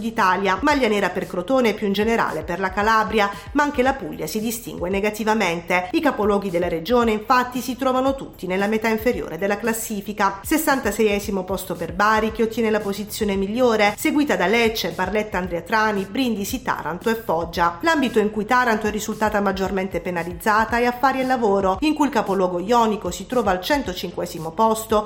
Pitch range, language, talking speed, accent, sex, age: 195-240 Hz, Italian, 170 wpm, native, female, 40-59